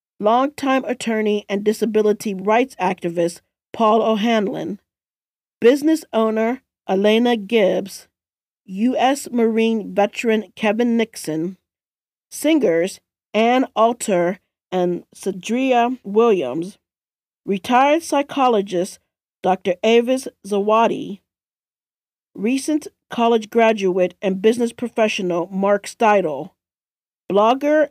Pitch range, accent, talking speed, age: 190-240 Hz, American, 80 wpm, 40-59